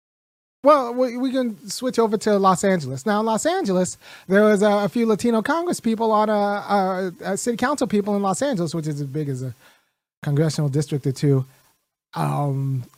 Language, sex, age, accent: English, male, 30-49, American